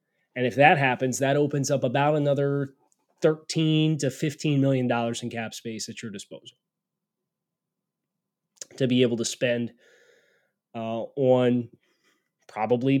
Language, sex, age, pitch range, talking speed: English, male, 20-39, 115-145 Hz, 125 wpm